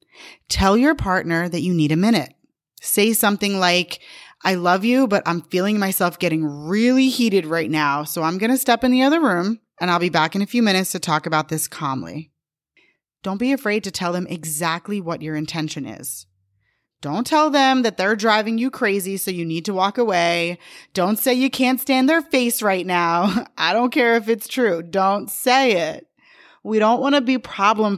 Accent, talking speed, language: American, 200 wpm, English